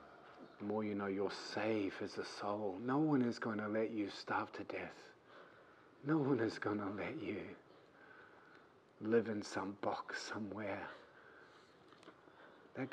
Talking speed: 150 wpm